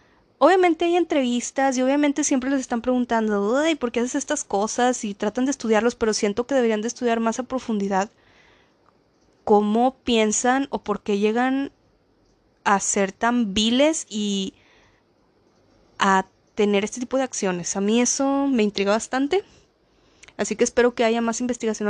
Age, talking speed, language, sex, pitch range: 20-39, 155 wpm, Spanish, female, 215-265 Hz